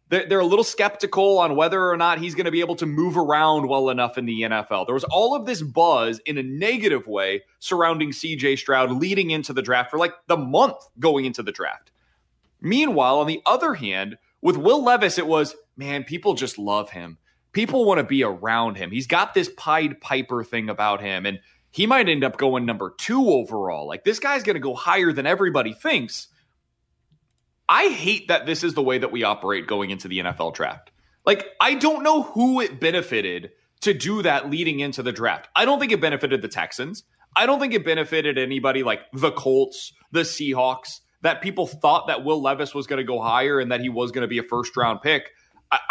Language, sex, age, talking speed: English, male, 30-49, 215 wpm